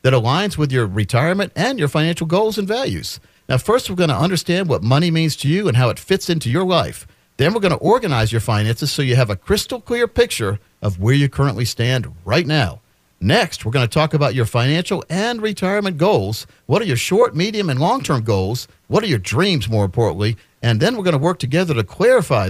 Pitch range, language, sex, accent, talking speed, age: 110-160 Hz, English, male, American, 215 wpm, 50-69